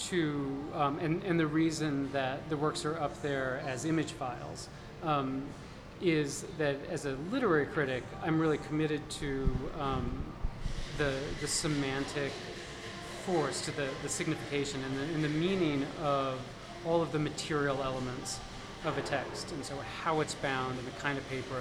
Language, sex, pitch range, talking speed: English, male, 135-160 Hz, 160 wpm